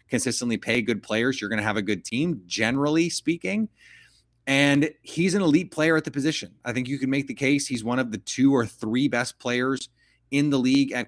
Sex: male